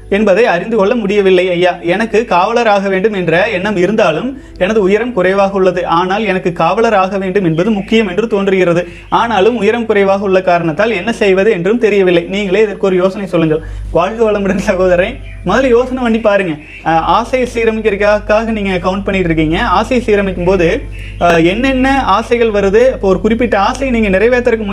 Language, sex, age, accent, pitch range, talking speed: Tamil, male, 30-49, native, 185-230 Hz, 155 wpm